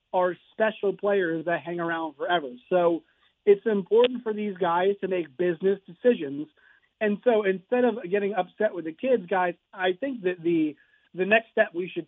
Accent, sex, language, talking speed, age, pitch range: American, male, English, 180 wpm, 40-59, 180-215 Hz